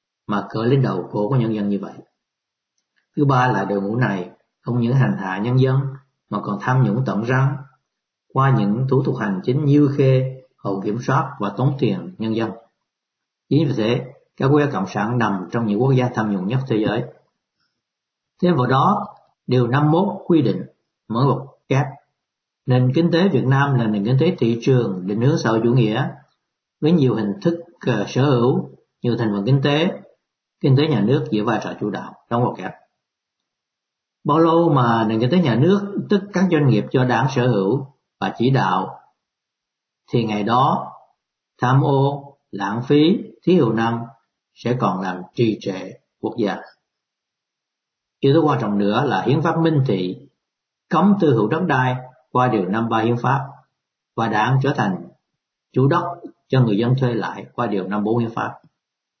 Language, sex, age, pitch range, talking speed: Vietnamese, male, 60-79, 110-145 Hz, 190 wpm